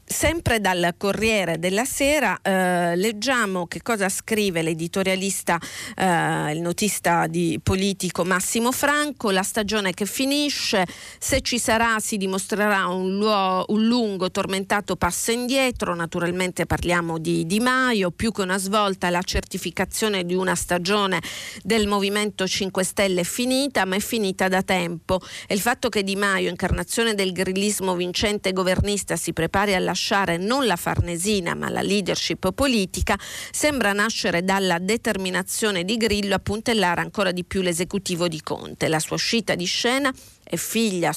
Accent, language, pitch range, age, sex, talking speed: native, Italian, 180-215 Hz, 40-59, female, 145 wpm